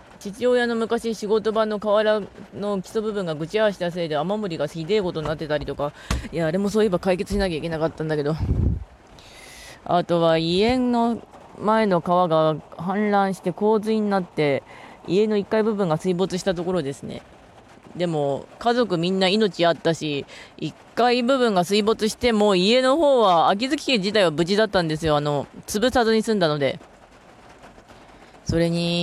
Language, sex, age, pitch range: Japanese, female, 20-39, 160-215 Hz